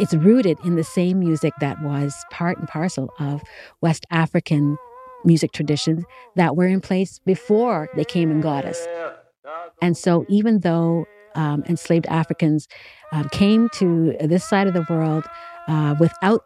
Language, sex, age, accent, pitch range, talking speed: English, female, 50-69, American, 155-185 Hz, 155 wpm